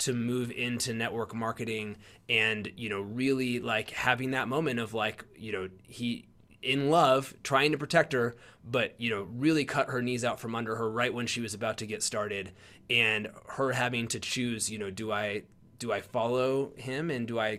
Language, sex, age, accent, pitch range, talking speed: English, male, 20-39, American, 110-130 Hz, 200 wpm